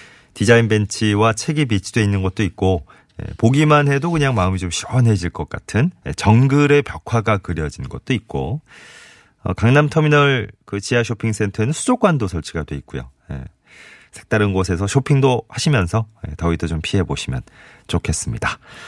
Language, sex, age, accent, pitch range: Korean, male, 30-49, native, 85-130 Hz